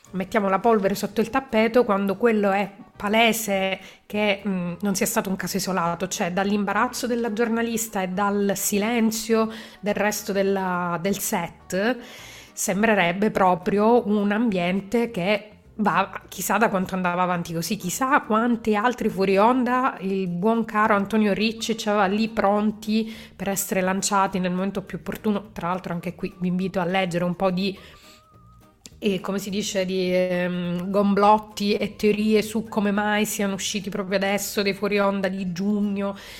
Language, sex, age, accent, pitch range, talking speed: Italian, female, 30-49, native, 190-220 Hz, 150 wpm